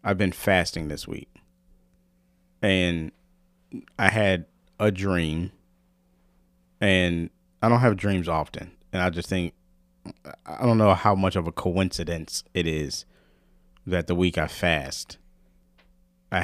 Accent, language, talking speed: American, English, 130 wpm